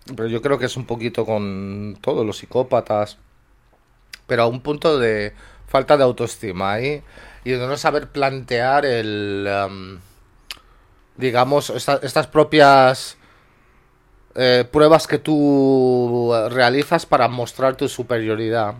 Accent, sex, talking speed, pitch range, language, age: Spanish, male, 130 wpm, 115-140 Hz, Spanish, 30-49